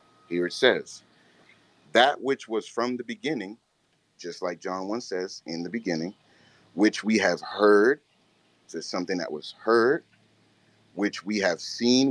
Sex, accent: male, American